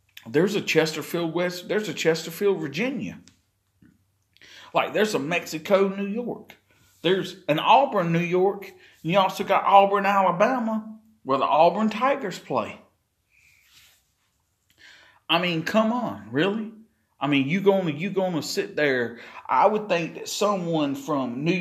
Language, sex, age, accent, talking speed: English, male, 40-59, American, 140 wpm